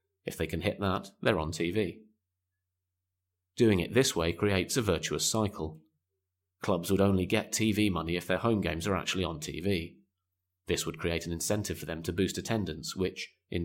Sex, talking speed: male, 185 wpm